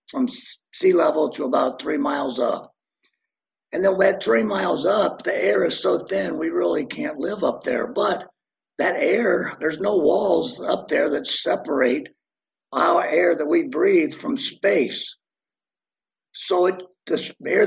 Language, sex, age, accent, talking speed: English, male, 50-69, American, 155 wpm